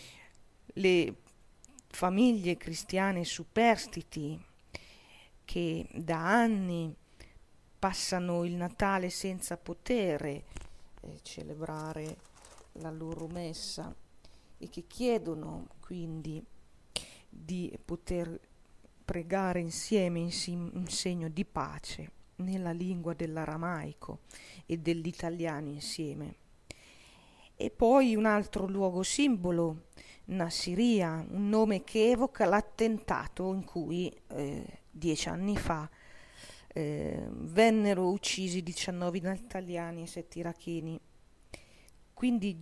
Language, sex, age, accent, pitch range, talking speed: Italian, female, 40-59, native, 165-195 Hz, 90 wpm